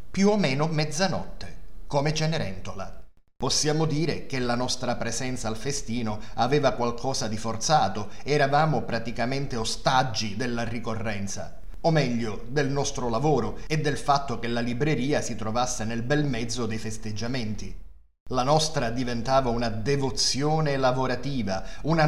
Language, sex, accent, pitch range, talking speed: Italian, male, native, 115-150 Hz, 130 wpm